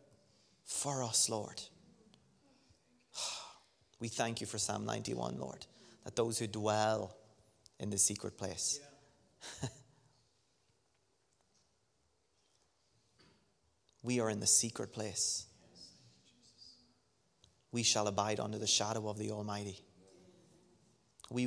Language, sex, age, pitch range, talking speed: English, male, 30-49, 110-165 Hz, 95 wpm